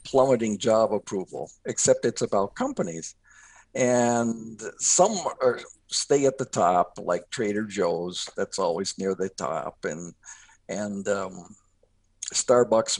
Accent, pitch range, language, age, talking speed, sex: American, 105-135 Hz, English, 60-79, 115 wpm, male